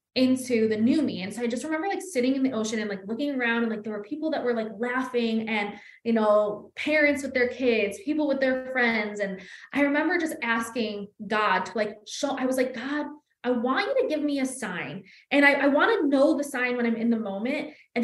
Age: 20-39